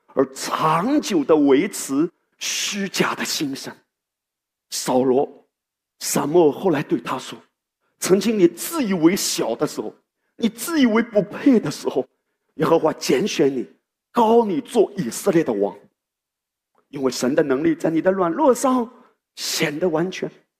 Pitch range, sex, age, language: 190-280 Hz, male, 50-69, Chinese